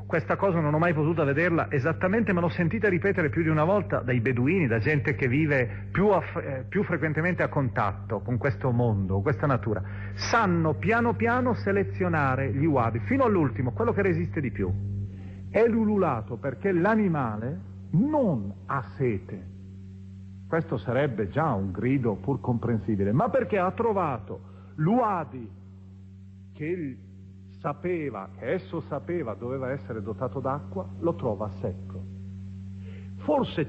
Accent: native